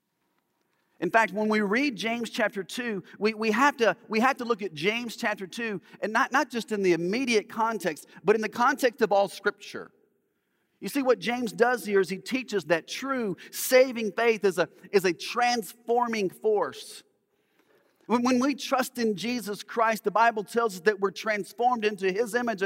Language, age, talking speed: English, 40-59, 185 wpm